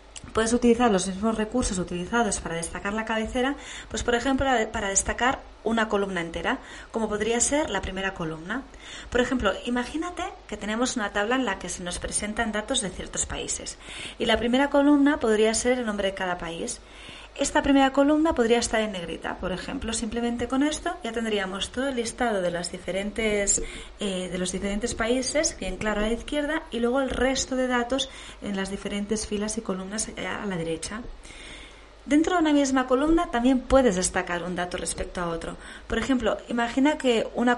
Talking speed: 185 wpm